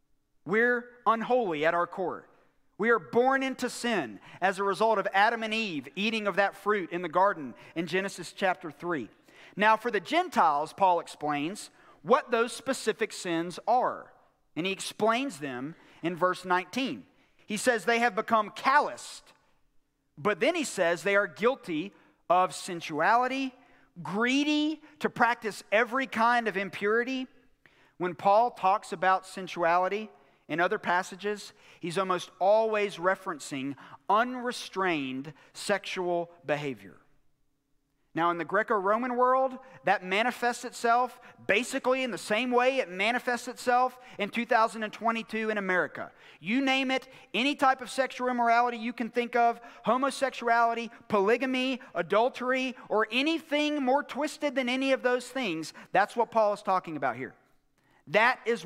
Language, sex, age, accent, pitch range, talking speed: English, male, 40-59, American, 180-245 Hz, 140 wpm